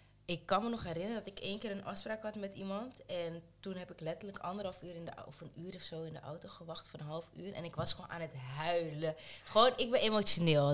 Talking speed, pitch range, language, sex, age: 250 wpm, 150-195 Hz, Dutch, female, 20-39